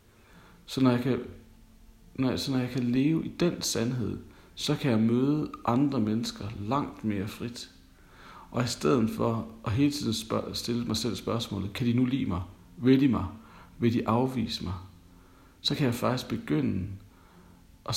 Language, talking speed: Danish, 155 wpm